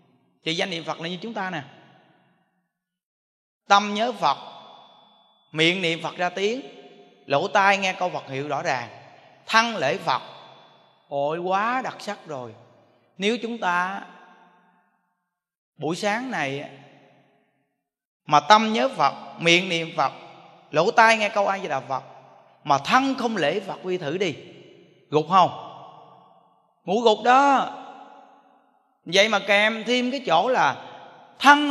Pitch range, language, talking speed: 165-225 Hz, Vietnamese, 140 wpm